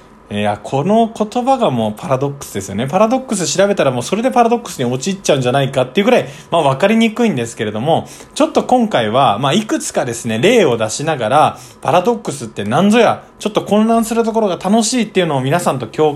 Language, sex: Japanese, male